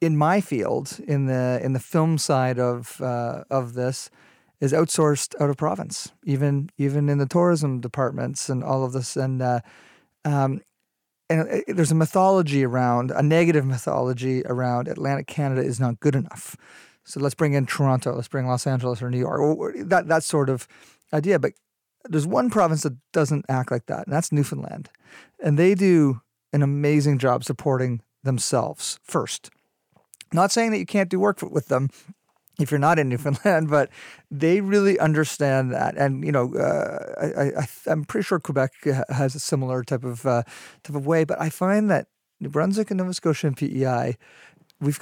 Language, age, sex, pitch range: English, 40-59, male, 130-160 Hz